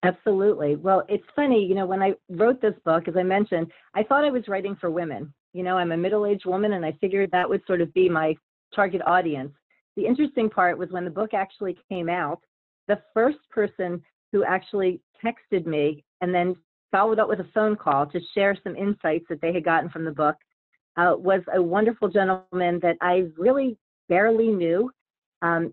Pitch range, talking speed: 175-210 Hz, 200 wpm